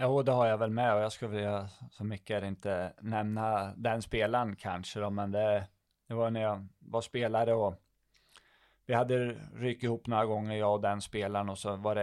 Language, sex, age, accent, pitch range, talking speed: English, male, 20-39, Swedish, 100-115 Hz, 205 wpm